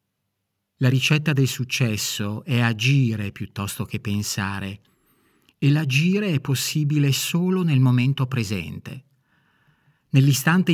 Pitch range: 115-145 Hz